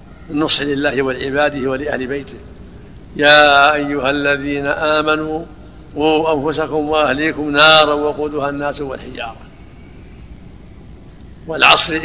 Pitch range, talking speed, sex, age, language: 140-155 Hz, 85 wpm, male, 60-79, Arabic